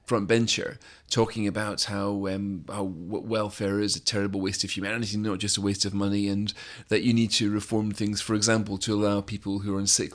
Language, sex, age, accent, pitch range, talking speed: English, male, 30-49, British, 100-120 Hz, 215 wpm